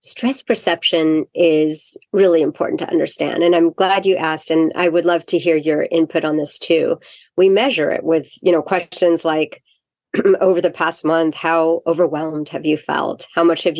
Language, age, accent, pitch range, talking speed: English, 50-69, American, 160-185 Hz, 185 wpm